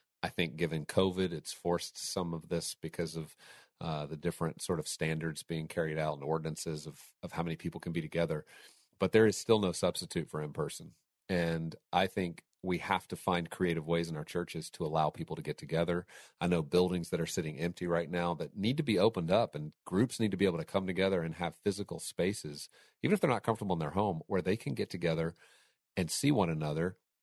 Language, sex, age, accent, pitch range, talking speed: English, male, 40-59, American, 80-100 Hz, 225 wpm